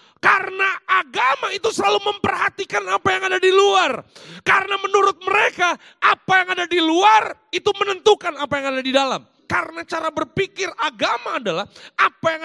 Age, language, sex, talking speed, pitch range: 30-49, Indonesian, male, 155 wpm, 270-395 Hz